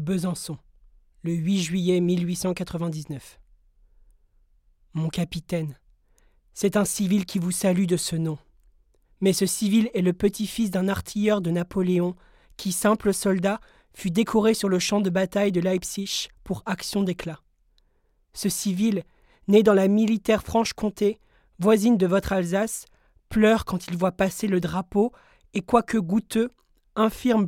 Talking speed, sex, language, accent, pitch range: 140 wpm, male, French, French, 185-220 Hz